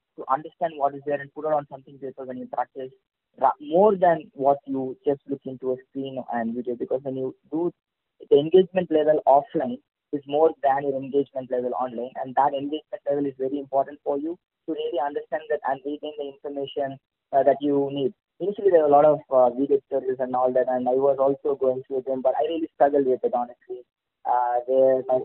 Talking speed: 210 wpm